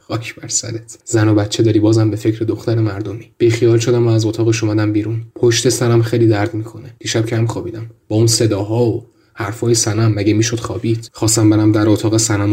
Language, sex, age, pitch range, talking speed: Persian, male, 10-29, 105-115 Hz, 180 wpm